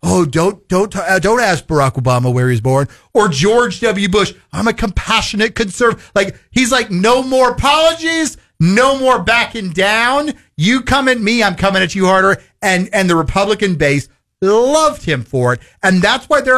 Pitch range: 155-220 Hz